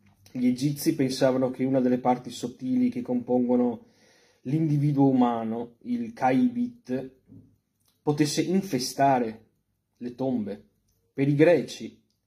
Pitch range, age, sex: 120-150 Hz, 30-49, male